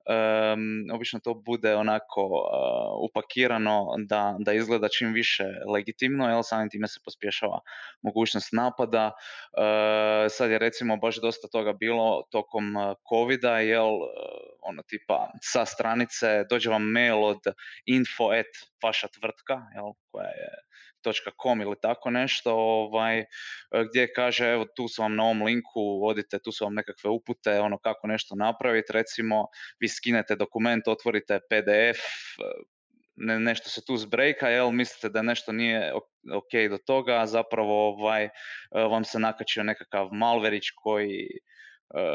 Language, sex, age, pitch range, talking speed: Croatian, male, 20-39, 105-120 Hz, 140 wpm